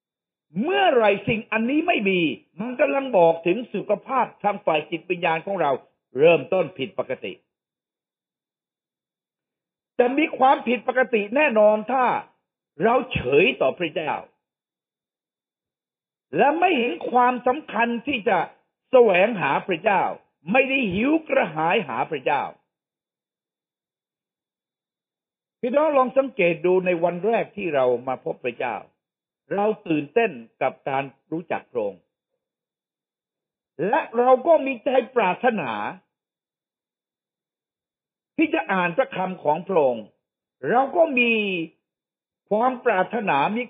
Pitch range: 190-270 Hz